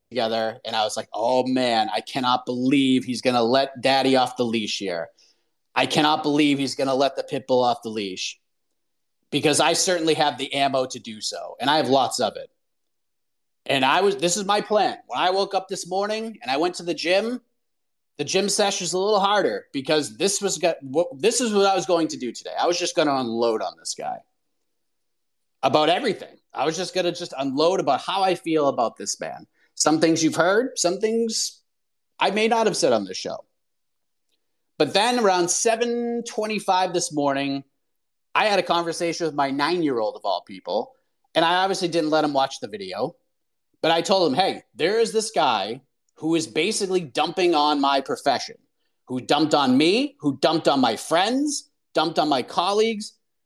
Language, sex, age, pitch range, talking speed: English, male, 30-49, 140-205 Hz, 200 wpm